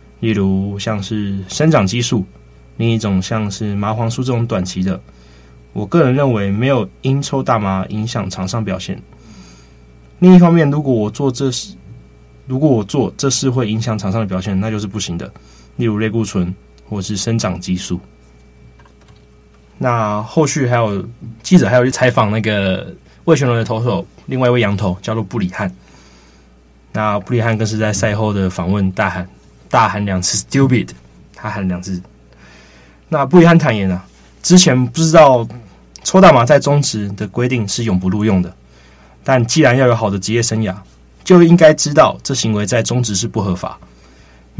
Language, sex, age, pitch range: Chinese, male, 20-39, 90-125 Hz